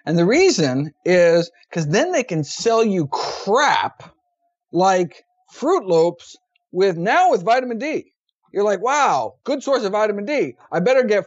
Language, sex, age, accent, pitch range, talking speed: English, male, 50-69, American, 165-230 Hz, 160 wpm